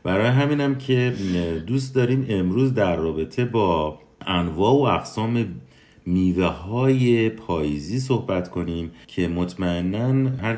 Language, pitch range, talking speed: Persian, 80-120 Hz, 115 wpm